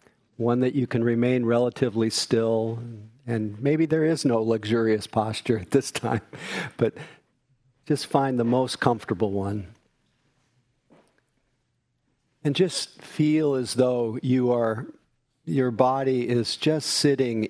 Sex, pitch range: male, 110-125 Hz